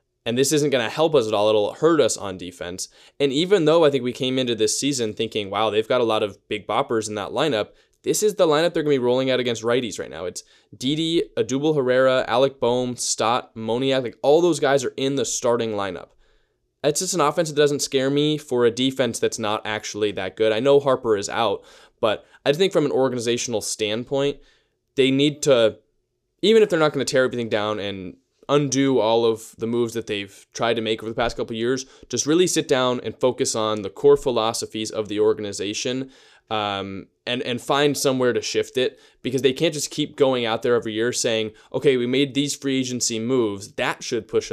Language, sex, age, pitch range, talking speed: English, male, 10-29, 110-140 Hz, 225 wpm